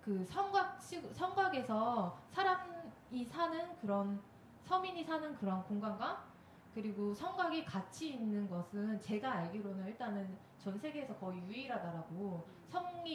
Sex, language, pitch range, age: female, Korean, 200-305 Hz, 20-39